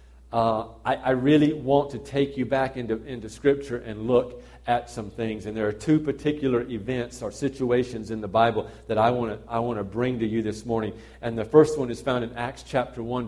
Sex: male